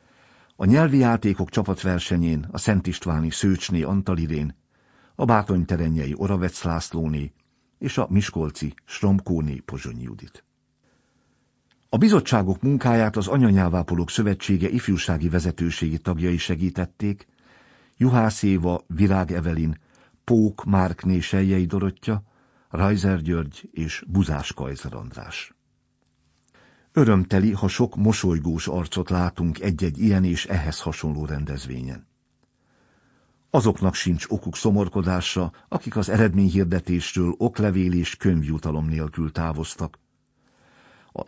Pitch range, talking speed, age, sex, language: 80-100 Hz, 100 wpm, 60-79, male, Hungarian